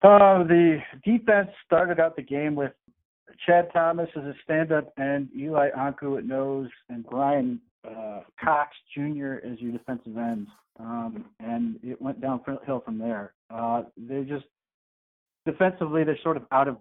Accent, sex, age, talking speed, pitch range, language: American, male, 40-59, 155 wpm, 110-140 Hz, English